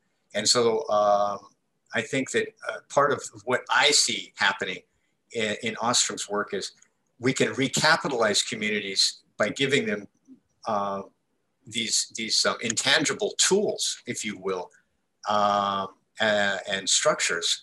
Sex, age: male, 50-69